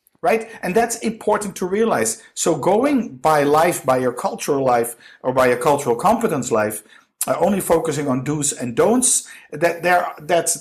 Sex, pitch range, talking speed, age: male, 130-170 Hz, 170 wpm, 50-69